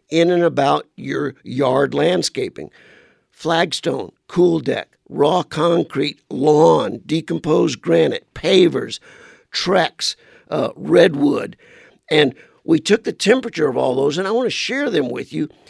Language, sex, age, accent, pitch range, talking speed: English, male, 50-69, American, 150-240 Hz, 130 wpm